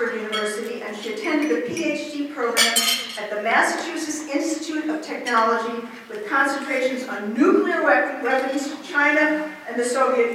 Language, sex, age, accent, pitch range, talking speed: English, female, 50-69, American, 210-290 Hz, 135 wpm